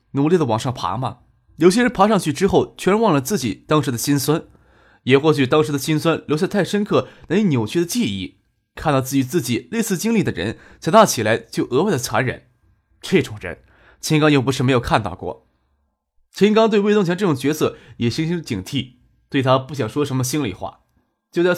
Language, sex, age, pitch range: Chinese, male, 20-39, 120-180 Hz